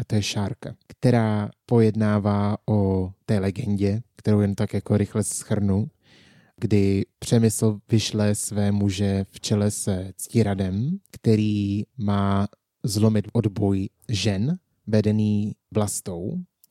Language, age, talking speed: Czech, 20-39, 110 wpm